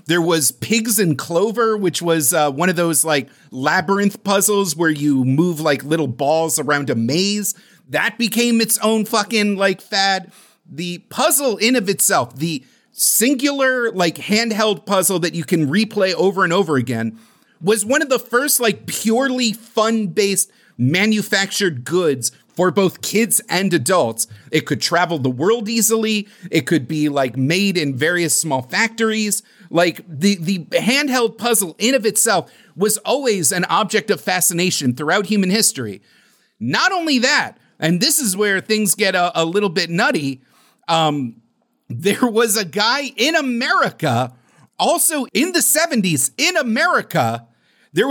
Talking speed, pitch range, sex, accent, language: 155 wpm, 165-225 Hz, male, American, English